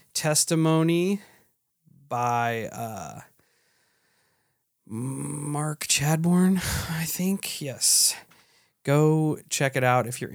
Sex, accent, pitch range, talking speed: male, American, 120-145 Hz, 80 wpm